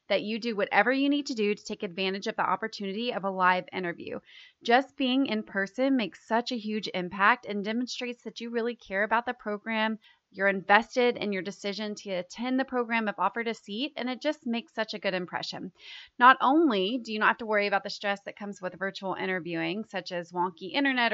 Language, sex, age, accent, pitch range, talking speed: English, female, 30-49, American, 195-235 Hz, 220 wpm